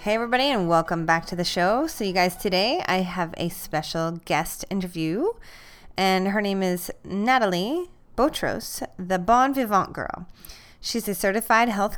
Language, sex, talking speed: English, female, 160 wpm